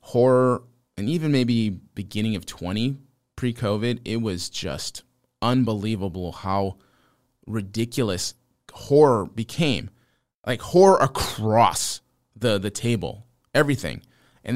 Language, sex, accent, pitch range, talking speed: English, male, American, 100-125 Hz, 100 wpm